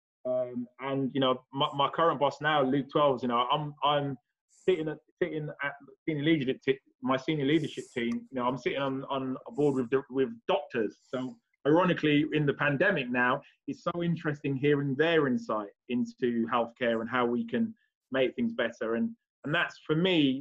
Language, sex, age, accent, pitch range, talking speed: English, male, 20-39, British, 125-150 Hz, 180 wpm